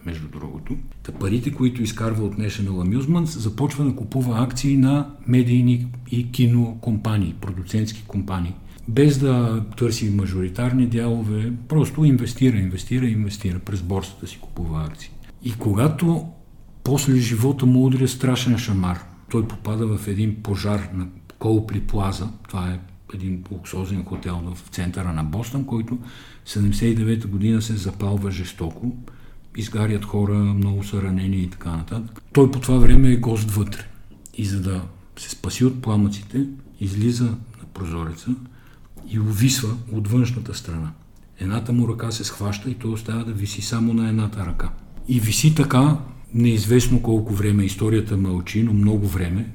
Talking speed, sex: 145 wpm, male